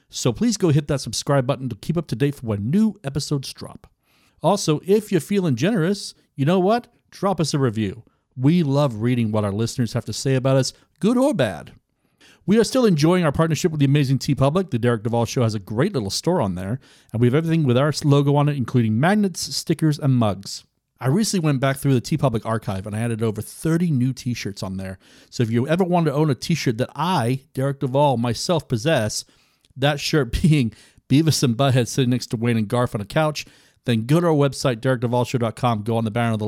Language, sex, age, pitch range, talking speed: English, male, 40-59, 120-150 Hz, 230 wpm